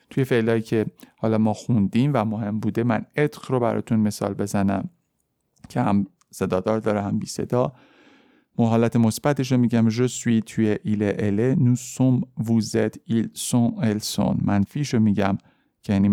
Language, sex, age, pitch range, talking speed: Persian, male, 50-69, 105-130 Hz, 145 wpm